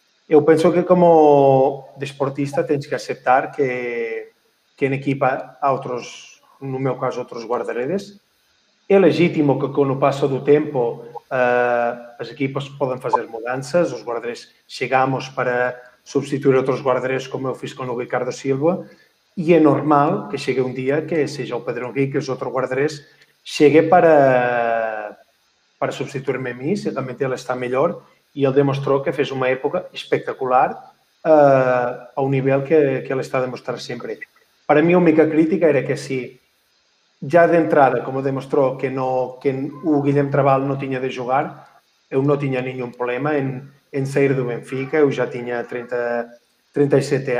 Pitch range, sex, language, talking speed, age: 130-150 Hz, male, Portuguese, 160 wpm, 30-49